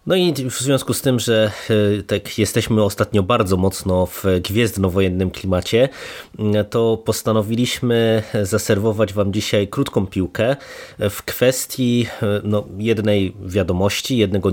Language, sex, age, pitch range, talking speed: Polish, male, 20-39, 95-110 Hz, 115 wpm